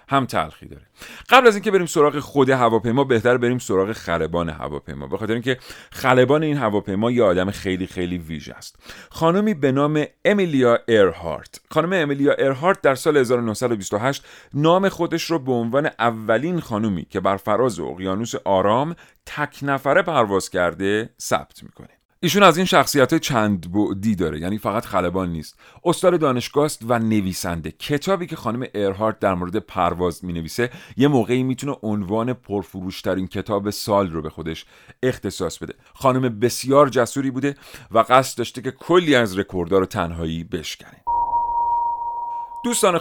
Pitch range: 95-145 Hz